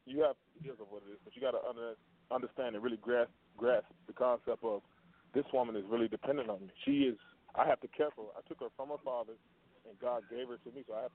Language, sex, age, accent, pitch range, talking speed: English, male, 20-39, American, 120-180 Hz, 265 wpm